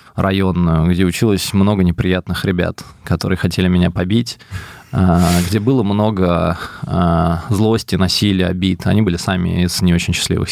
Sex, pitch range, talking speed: male, 90-110 Hz, 130 wpm